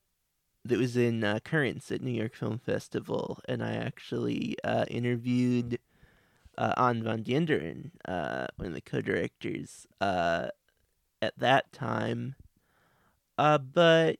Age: 20-39